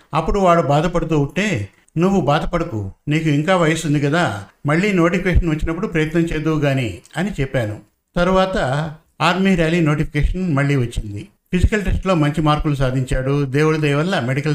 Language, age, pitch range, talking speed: Telugu, 60-79, 145-175 Hz, 145 wpm